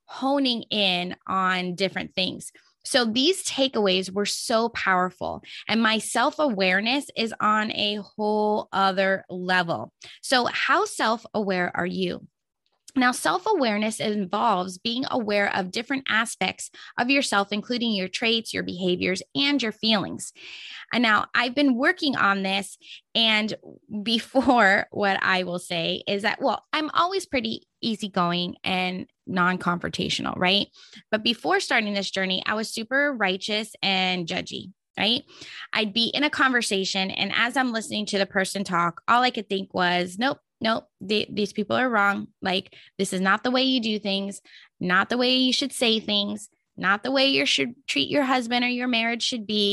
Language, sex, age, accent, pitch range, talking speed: English, female, 20-39, American, 195-250 Hz, 160 wpm